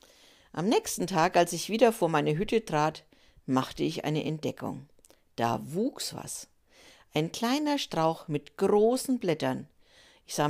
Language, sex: German, female